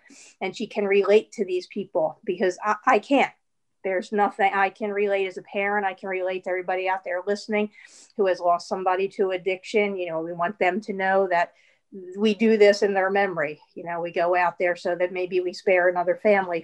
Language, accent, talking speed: English, American, 215 wpm